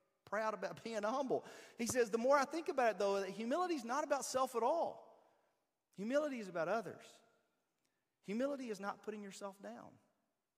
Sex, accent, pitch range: male, American, 135-200 Hz